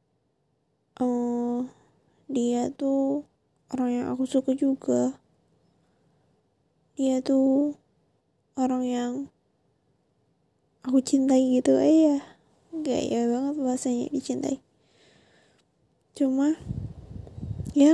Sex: female